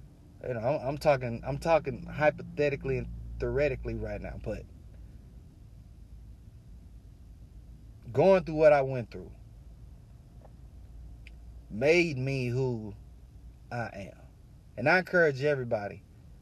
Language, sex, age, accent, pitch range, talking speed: English, male, 30-49, American, 100-150 Hz, 100 wpm